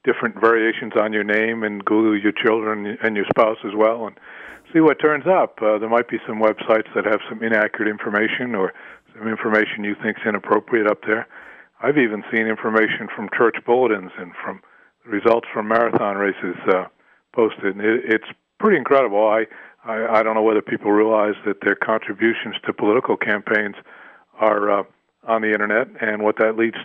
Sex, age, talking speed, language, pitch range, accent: male, 50-69, 180 wpm, English, 105-115 Hz, American